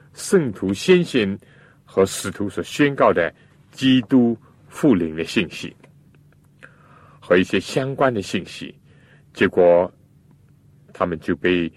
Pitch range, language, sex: 95-145 Hz, Chinese, male